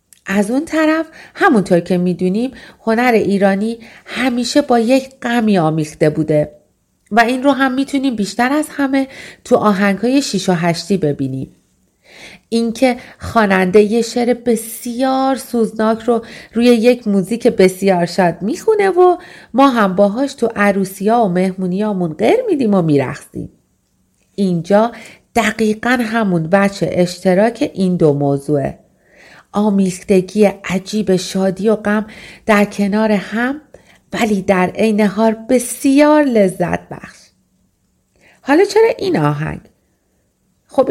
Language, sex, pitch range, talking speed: Persian, female, 190-245 Hz, 120 wpm